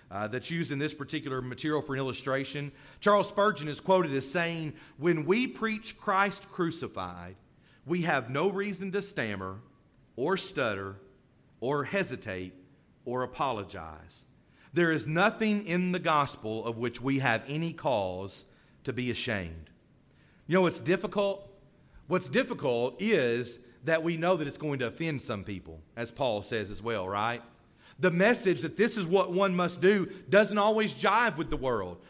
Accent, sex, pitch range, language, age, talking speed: American, male, 130-195 Hz, English, 40-59, 160 wpm